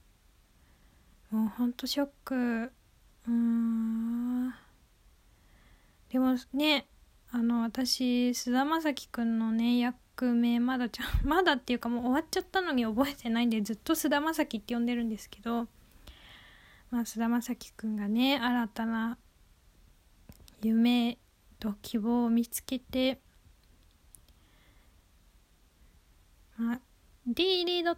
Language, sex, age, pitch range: Japanese, female, 20-39, 230-280 Hz